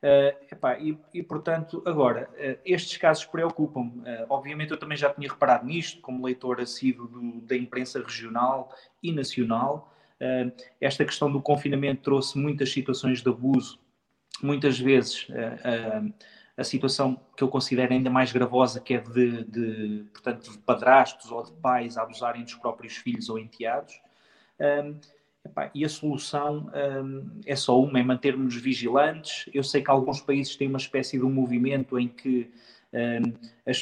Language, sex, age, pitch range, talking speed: Portuguese, male, 20-39, 125-140 Hz, 155 wpm